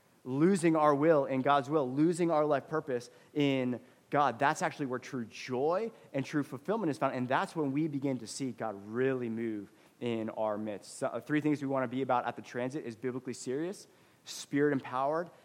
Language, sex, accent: English, male, American